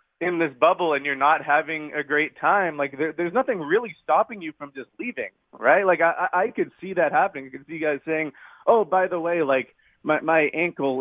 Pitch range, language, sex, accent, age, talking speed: 140-165 Hz, English, male, American, 30-49, 230 wpm